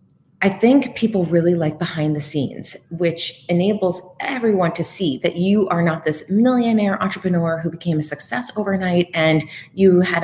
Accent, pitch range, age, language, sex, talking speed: American, 160-195 Hz, 30-49, English, female, 165 wpm